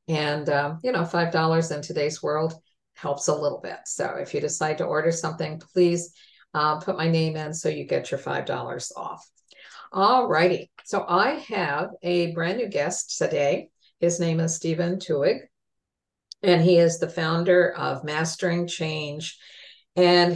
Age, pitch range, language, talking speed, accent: 50-69, 155-175 Hz, English, 160 wpm, American